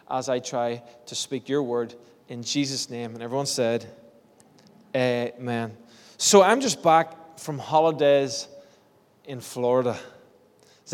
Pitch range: 125-150 Hz